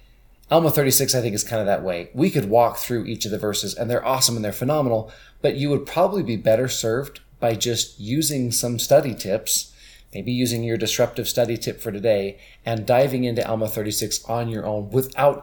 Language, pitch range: English, 105-135 Hz